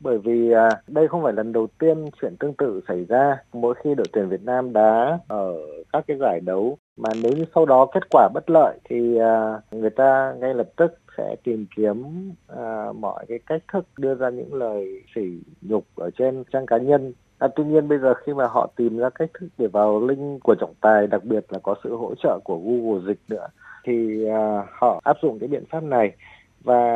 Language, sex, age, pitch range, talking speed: Vietnamese, male, 20-39, 110-155 Hz, 215 wpm